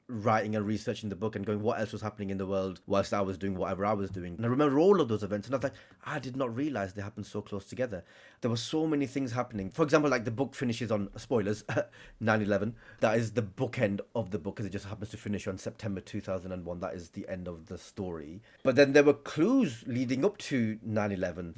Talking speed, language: 250 wpm, English